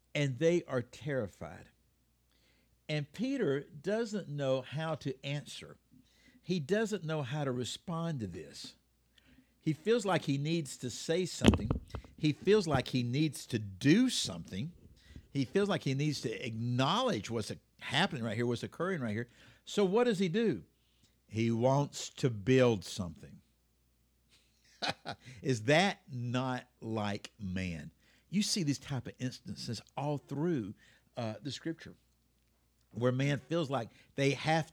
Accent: American